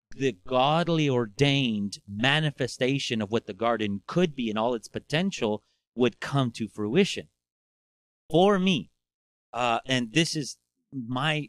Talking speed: 130 wpm